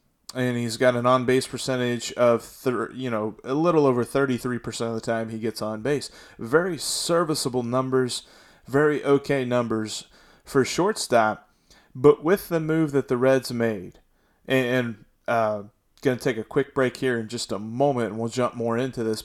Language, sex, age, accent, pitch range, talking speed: English, male, 30-49, American, 115-140 Hz, 170 wpm